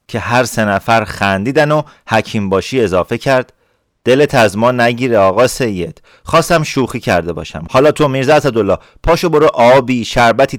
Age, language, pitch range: 30-49, Persian, 110-145 Hz